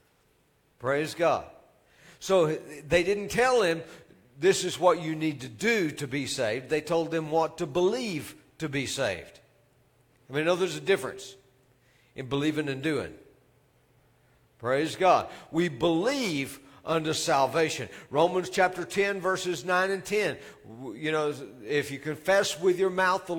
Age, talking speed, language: 50-69, 150 wpm, English